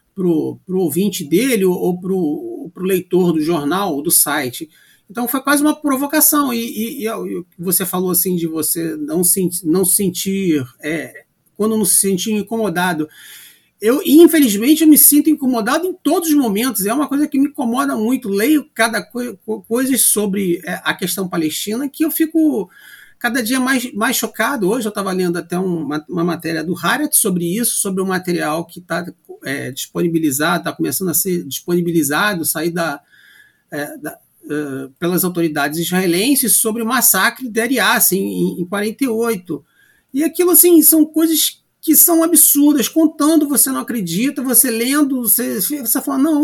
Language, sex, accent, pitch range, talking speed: Portuguese, male, Brazilian, 175-285 Hz, 165 wpm